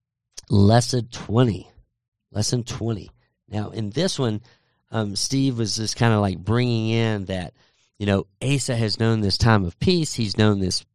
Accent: American